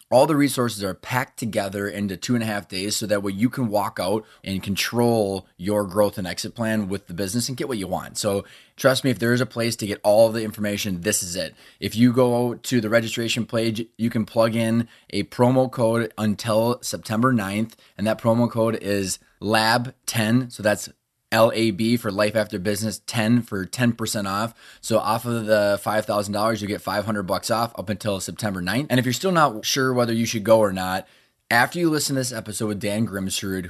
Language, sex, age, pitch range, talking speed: English, male, 20-39, 100-120 Hz, 215 wpm